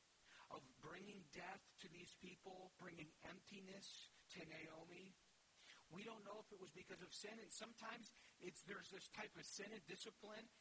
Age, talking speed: 50-69, 165 wpm